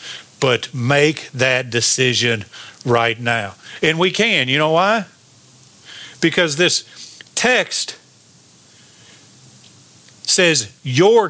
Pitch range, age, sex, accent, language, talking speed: 145-225 Hz, 50-69, male, American, English, 90 wpm